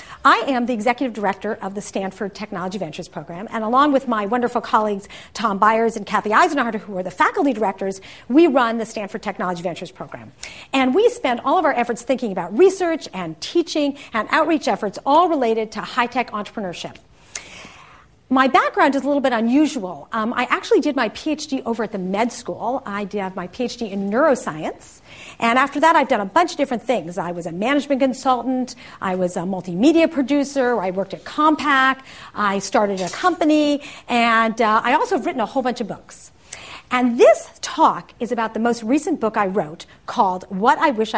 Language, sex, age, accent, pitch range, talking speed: English, female, 50-69, American, 205-295 Hz, 195 wpm